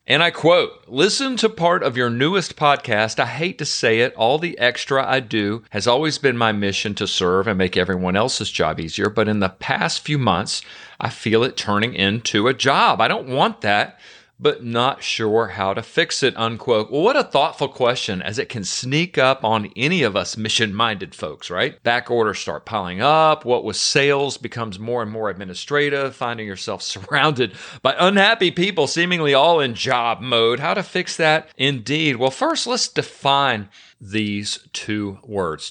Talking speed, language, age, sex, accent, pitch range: 185 wpm, English, 40-59, male, American, 110-150 Hz